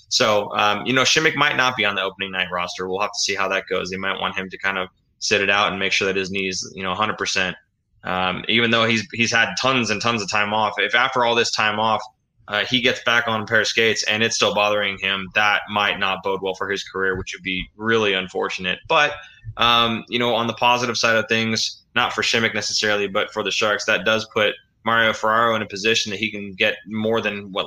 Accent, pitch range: American, 95-115 Hz